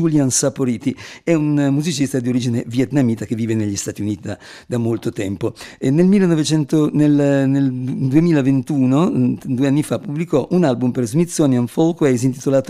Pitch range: 120-145 Hz